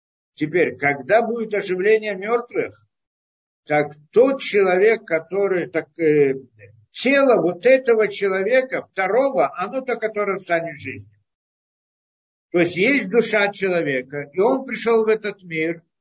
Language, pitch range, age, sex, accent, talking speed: Russian, 160-230 Hz, 50-69, male, native, 125 wpm